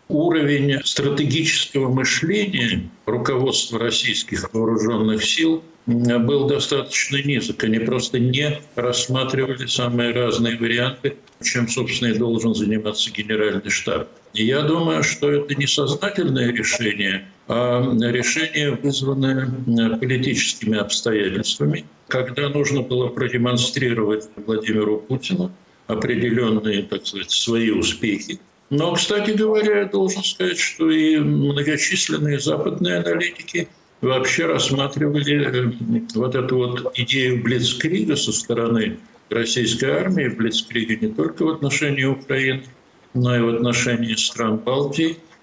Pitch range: 115-145 Hz